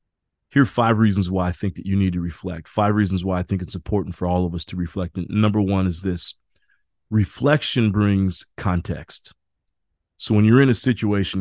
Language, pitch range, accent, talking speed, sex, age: English, 90-105 Hz, American, 205 wpm, male, 30-49